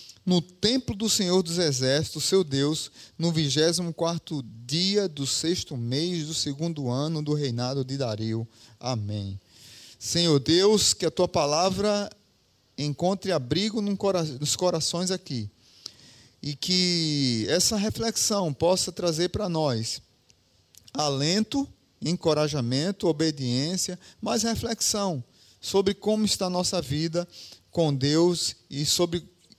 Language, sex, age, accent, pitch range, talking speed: Portuguese, male, 30-49, Brazilian, 135-200 Hz, 115 wpm